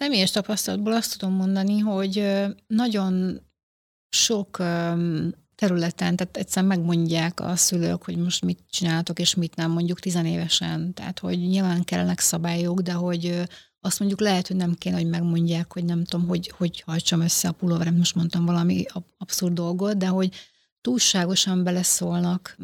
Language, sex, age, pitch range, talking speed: Hungarian, female, 30-49, 170-190 Hz, 150 wpm